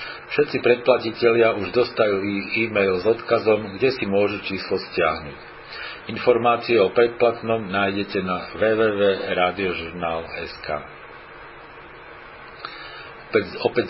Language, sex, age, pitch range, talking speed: Slovak, male, 50-69, 100-120 Hz, 80 wpm